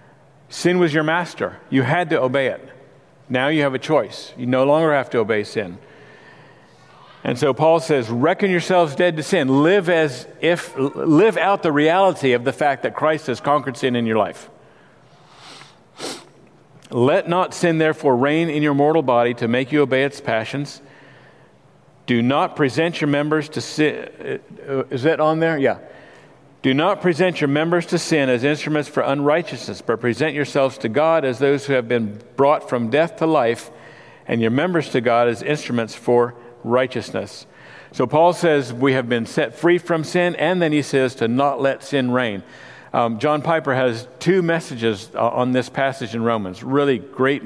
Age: 50-69